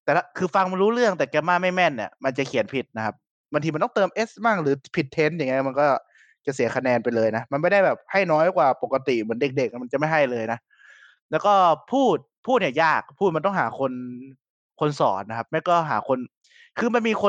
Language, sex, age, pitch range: Thai, male, 20-39, 120-185 Hz